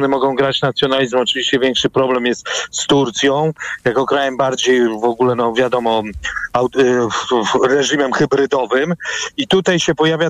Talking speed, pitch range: 130 wpm, 130-150 Hz